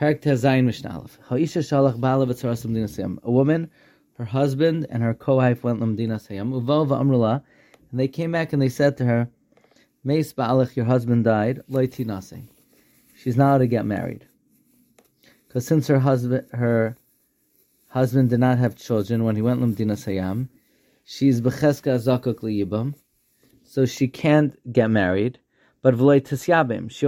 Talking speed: 115 wpm